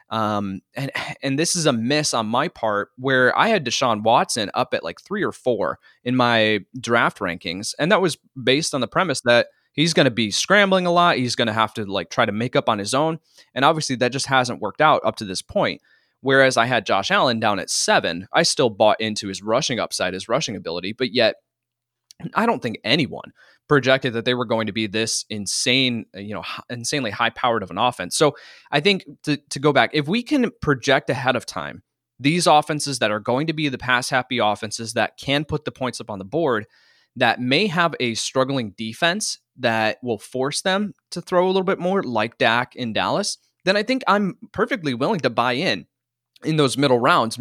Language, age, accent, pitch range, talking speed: English, 20-39, American, 115-150 Hz, 220 wpm